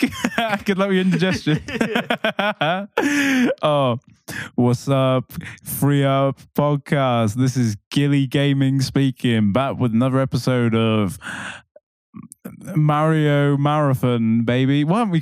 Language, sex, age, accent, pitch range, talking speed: English, male, 20-39, British, 115-150 Hz, 105 wpm